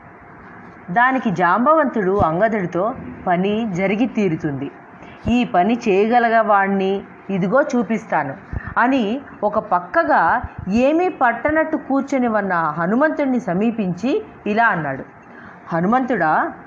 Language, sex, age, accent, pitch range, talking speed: Telugu, female, 30-49, native, 195-285 Hz, 85 wpm